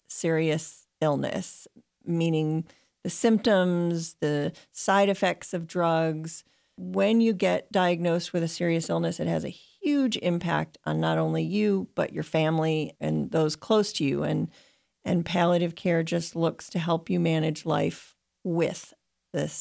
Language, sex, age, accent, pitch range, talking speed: English, female, 40-59, American, 160-190 Hz, 145 wpm